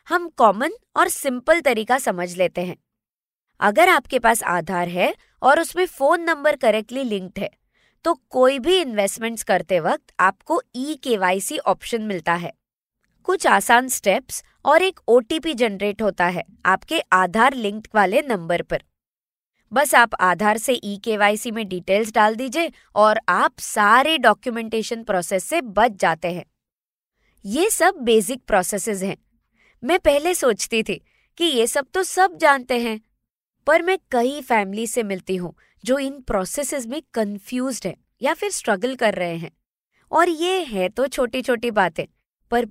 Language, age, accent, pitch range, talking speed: Hindi, 20-39, native, 195-285 Hz, 155 wpm